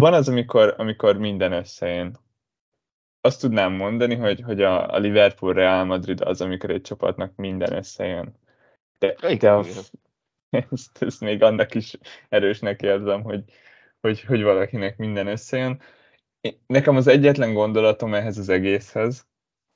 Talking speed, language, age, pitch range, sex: 130 wpm, Hungarian, 10-29, 95-120 Hz, male